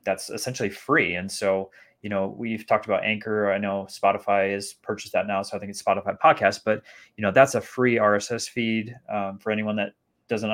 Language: English